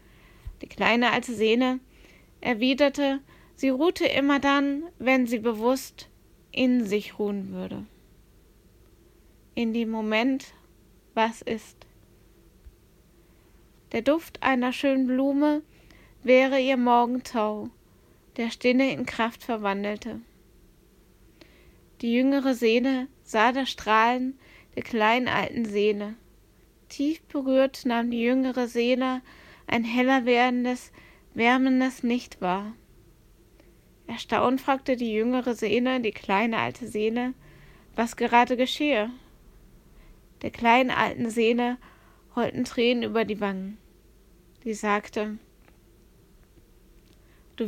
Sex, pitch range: female, 225-260 Hz